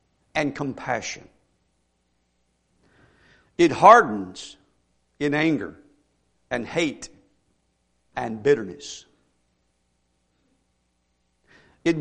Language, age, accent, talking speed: English, 60-79, American, 55 wpm